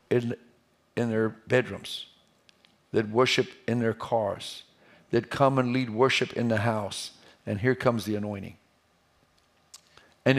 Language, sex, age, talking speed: English, male, 50-69, 135 wpm